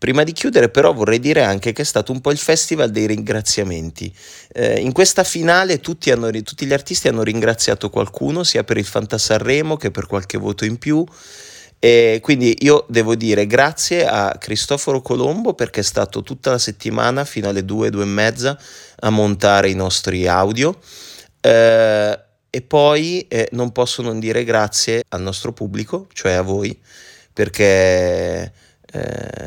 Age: 30-49